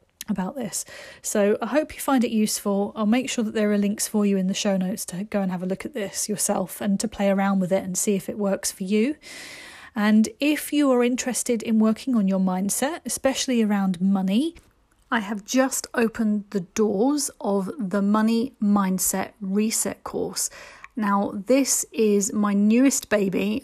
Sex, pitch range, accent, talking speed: female, 200-250 Hz, British, 190 wpm